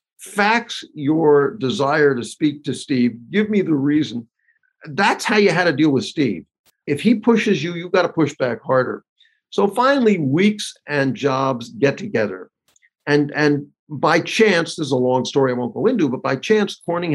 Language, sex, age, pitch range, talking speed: English, male, 50-69, 140-205 Hz, 180 wpm